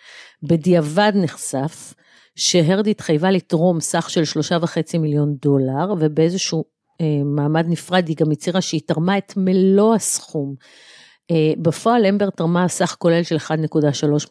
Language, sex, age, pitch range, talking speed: Hebrew, female, 50-69, 155-190 Hz, 130 wpm